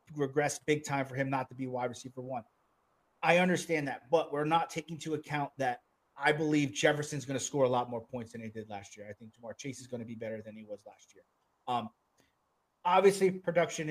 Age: 30-49